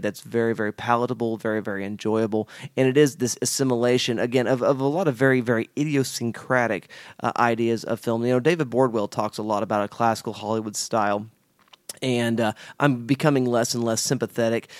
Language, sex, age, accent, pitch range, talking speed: English, male, 30-49, American, 110-135 Hz, 185 wpm